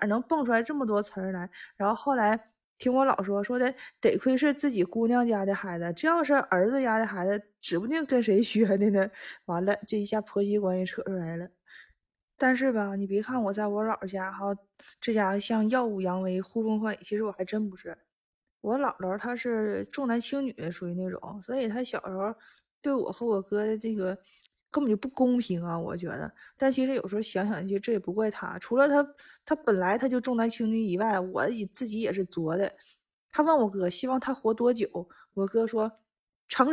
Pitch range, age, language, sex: 195-250 Hz, 20-39, Chinese, female